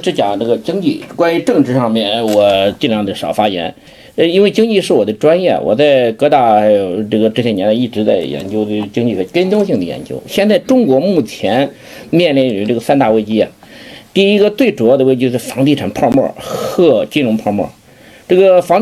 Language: Chinese